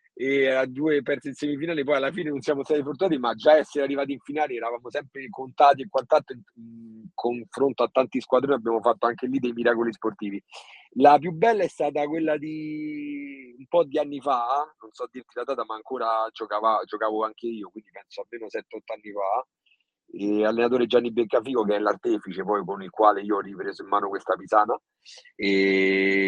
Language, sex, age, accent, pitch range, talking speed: Italian, male, 40-59, native, 120-150 Hz, 185 wpm